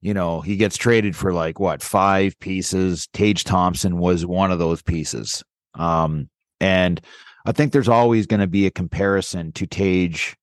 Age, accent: 30-49, American